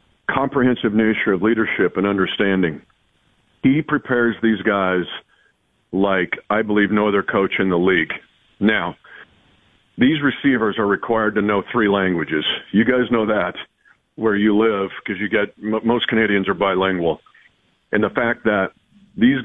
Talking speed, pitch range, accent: 145 wpm, 100-120 Hz, American